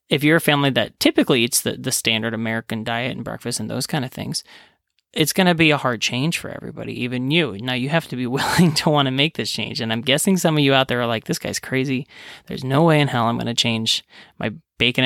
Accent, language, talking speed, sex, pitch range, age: American, English, 265 wpm, male, 115-140 Hz, 30-49